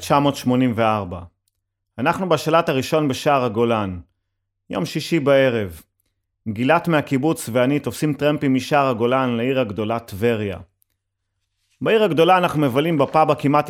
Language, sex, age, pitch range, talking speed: Hebrew, male, 30-49, 110-145 Hz, 110 wpm